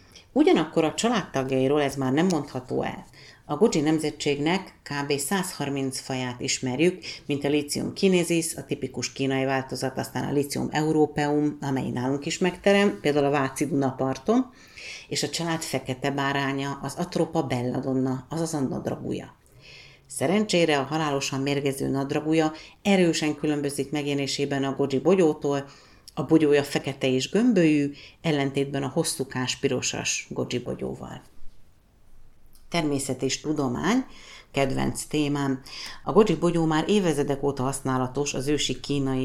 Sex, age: female, 50-69